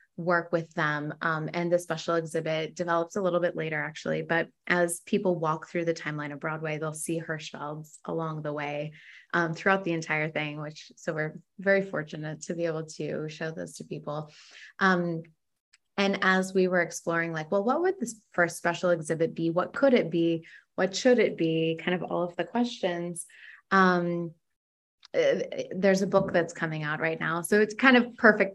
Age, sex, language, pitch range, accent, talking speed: 20-39, female, English, 160-190 Hz, American, 195 wpm